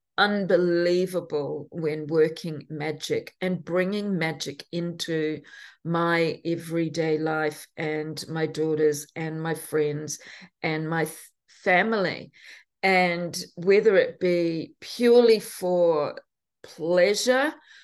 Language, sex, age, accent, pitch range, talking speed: English, female, 40-59, Australian, 160-215 Hz, 90 wpm